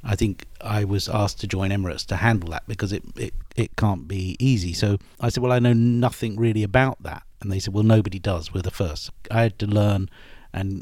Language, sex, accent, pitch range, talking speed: English, male, British, 95-115 Hz, 225 wpm